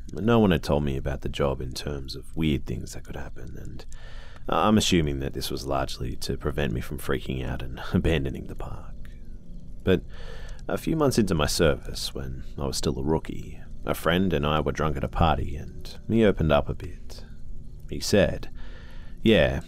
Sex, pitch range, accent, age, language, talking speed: male, 65-80 Hz, Australian, 30-49, English, 195 wpm